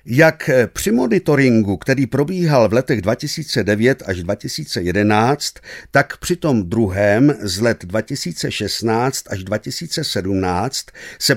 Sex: male